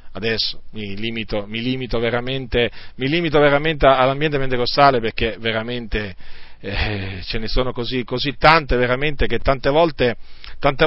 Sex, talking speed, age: male, 140 wpm, 40-59